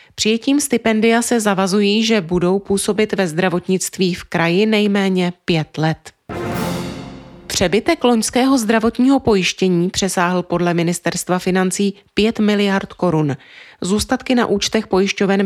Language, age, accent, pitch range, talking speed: Czech, 30-49, native, 175-210 Hz, 115 wpm